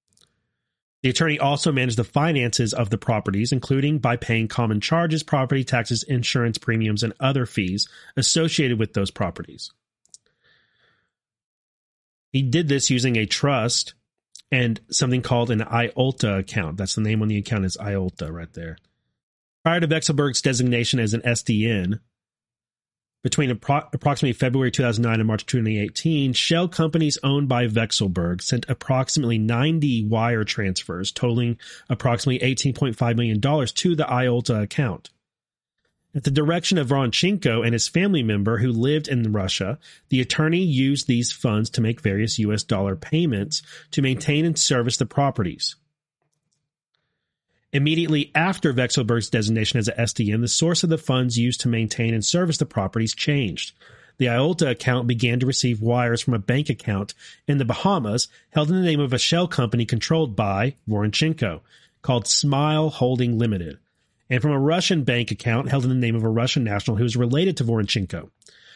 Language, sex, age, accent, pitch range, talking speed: English, male, 30-49, American, 115-145 Hz, 155 wpm